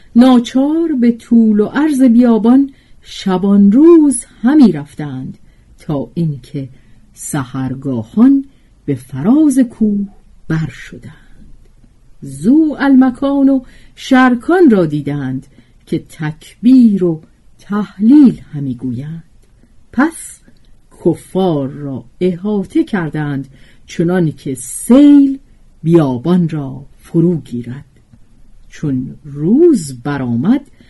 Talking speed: 85 wpm